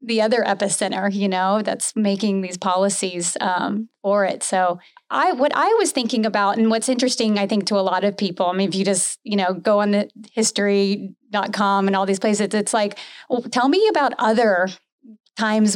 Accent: American